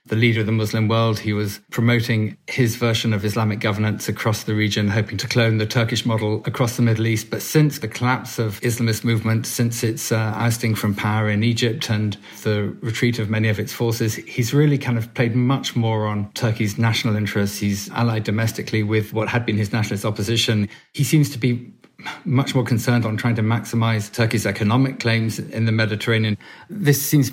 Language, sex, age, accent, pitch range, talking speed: English, male, 40-59, British, 105-120 Hz, 200 wpm